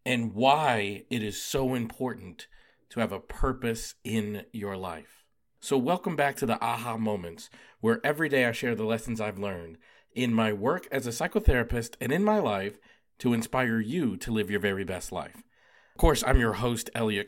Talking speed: 190 wpm